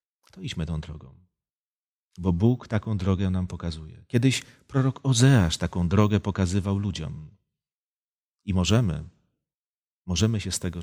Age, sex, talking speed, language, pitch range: 40-59, male, 120 wpm, Polish, 85-110 Hz